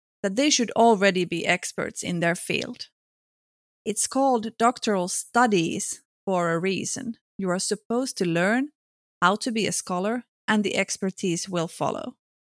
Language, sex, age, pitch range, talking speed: Finnish, female, 30-49, 180-230 Hz, 150 wpm